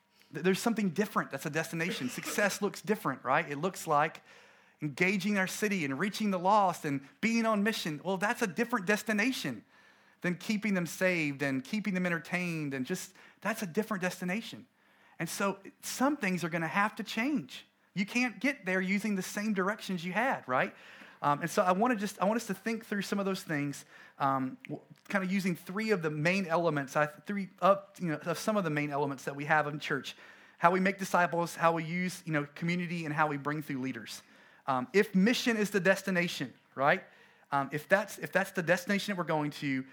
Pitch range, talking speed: 150-205 Hz, 210 wpm